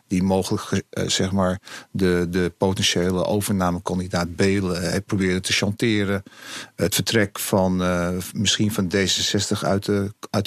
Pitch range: 100-120 Hz